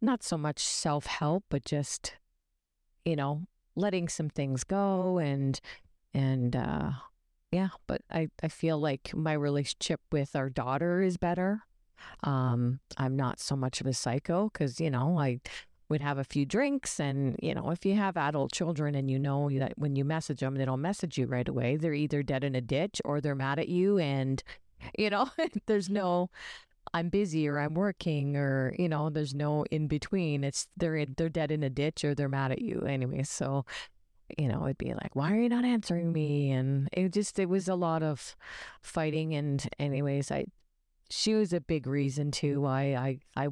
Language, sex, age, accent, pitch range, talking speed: English, female, 40-59, American, 135-170 Hz, 195 wpm